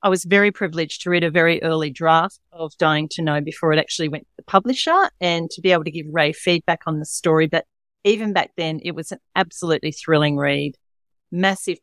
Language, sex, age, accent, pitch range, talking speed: English, female, 40-59, Australian, 165-200 Hz, 220 wpm